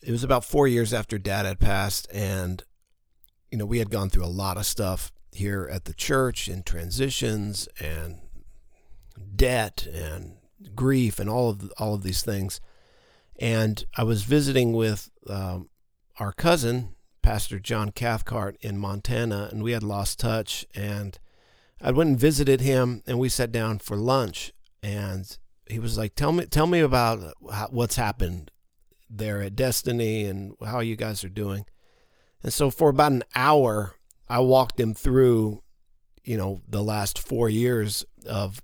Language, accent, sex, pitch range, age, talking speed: English, American, male, 100-120 Hz, 50-69, 160 wpm